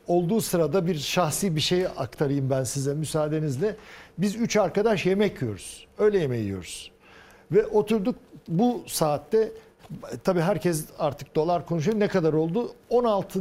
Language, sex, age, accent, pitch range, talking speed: Turkish, male, 60-79, native, 155-210 Hz, 140 wpm